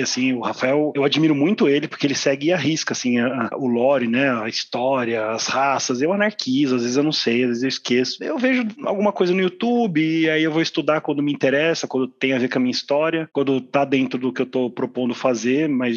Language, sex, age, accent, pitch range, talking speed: Portuguese, male, 20-39, Brazilian, 130-175 Hz, 245 wpm